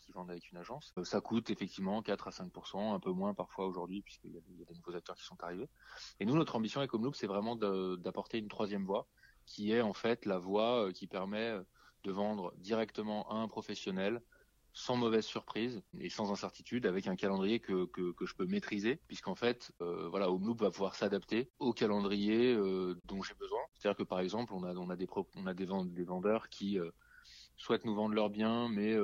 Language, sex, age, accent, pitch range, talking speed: French, male, 20-39, French, 95-115 Hz, 210 wpm